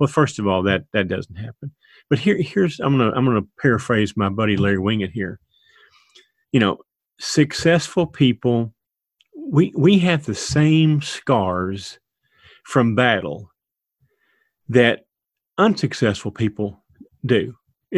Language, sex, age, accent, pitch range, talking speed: English, male, 40-59, American, 115-155 Hz, 130 wpm